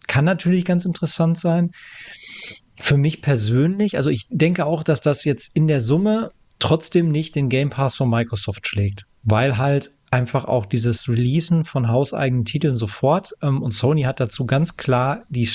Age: 40-59